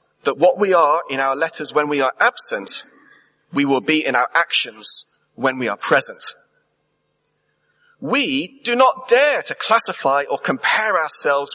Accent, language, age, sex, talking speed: British, English, 30-49, male, 155 wpm